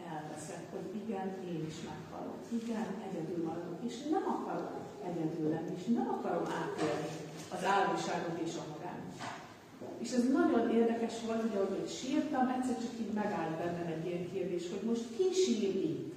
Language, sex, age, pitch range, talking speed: Hungarian, female, 40-59, 175-230 Hz, 160 wpm